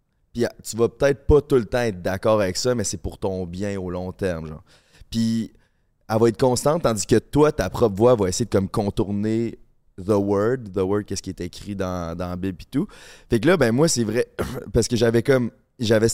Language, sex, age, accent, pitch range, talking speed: French, male, 20-39, Canadian, 95-120 Hz, 230 wpm